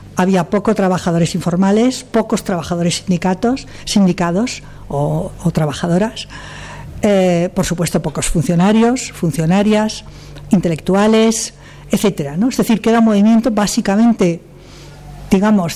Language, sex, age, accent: Spanish, female, 50-69, Spanish